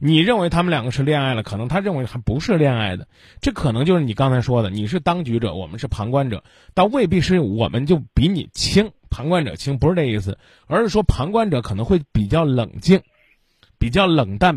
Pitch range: 110-175 Hz